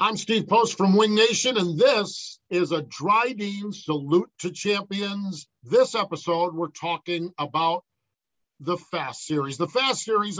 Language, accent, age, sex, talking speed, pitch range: English, American, 50-69, male, 145 wpm, 155-205 Hz